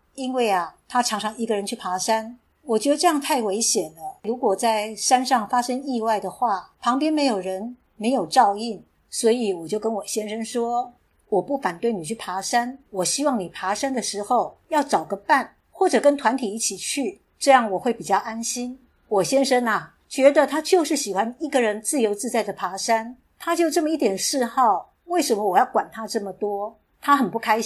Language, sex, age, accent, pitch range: Chinese, female, 50-69, American, 210-270 Hz